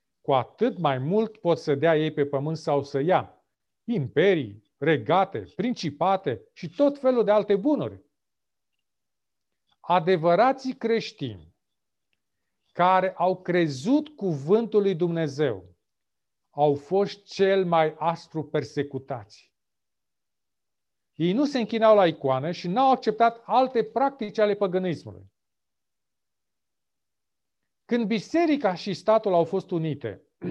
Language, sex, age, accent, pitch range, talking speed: Romanian, male, 40-59, native, 155-215 Hz, 110 wpm